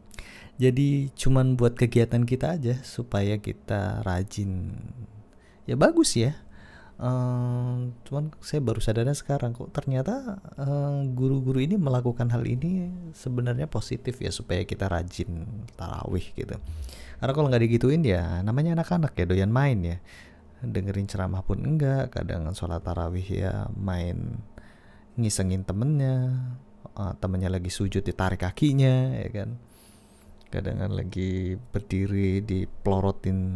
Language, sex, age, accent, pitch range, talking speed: Indonesian, male, 30-49, native, 95-125 Hz, 120 wpm